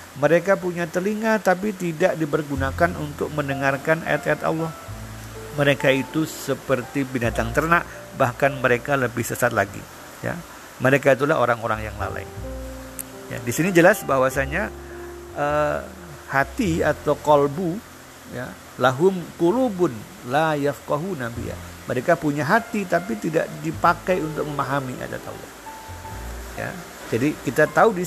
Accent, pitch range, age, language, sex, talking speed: native, 130-175 Hz, 50-69, Indonesian, male, 120 wpm